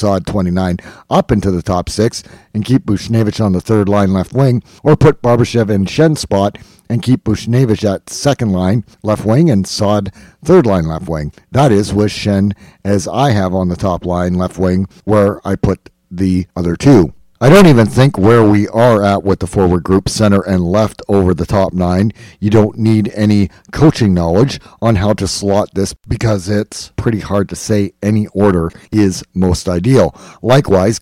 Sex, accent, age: male, American, 50-69